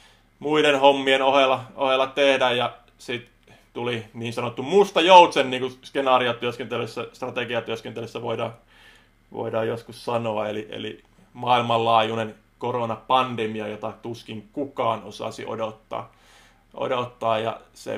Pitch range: 115-140 Hz